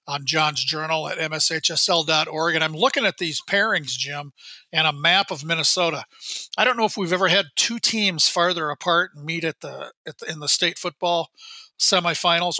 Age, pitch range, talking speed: 40-59, 155-190 Hz, 185 wpm